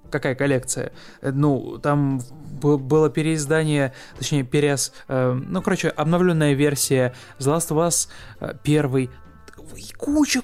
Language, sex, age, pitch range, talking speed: Russian, male, 20-39, 135-165 Hz, 115 wpm